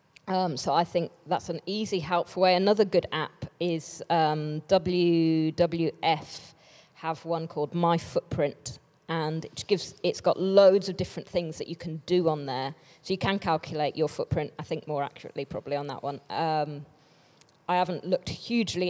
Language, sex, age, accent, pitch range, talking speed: English, female, 20-39, British, 150-170 Hz, 170 wpm